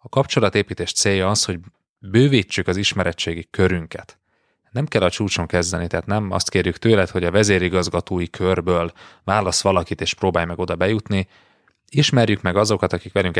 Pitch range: 90-100 Hz